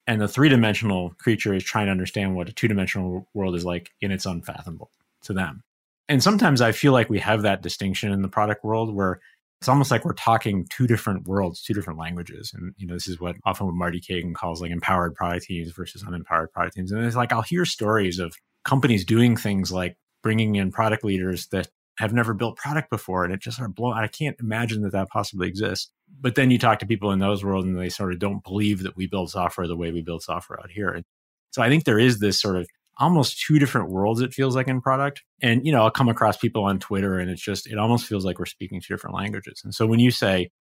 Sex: male